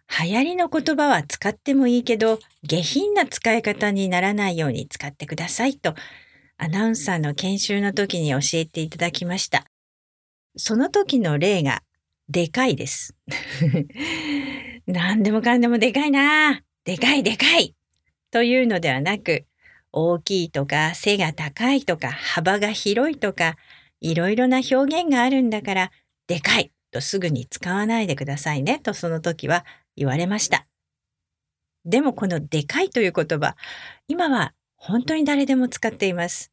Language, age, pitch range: English, 50-69, 165-255 Hz